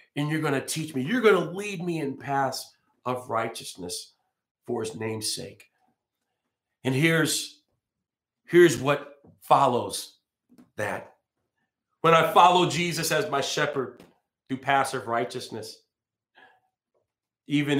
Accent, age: American, 40-59